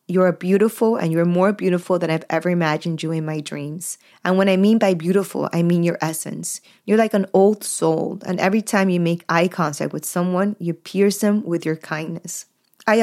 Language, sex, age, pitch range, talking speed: English, female, 20-39, 165-200 Hz, 210 wpm